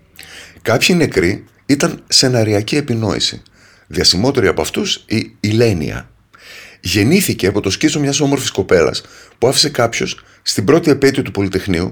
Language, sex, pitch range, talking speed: Greek, male, 95-130 Hz, 120 wpm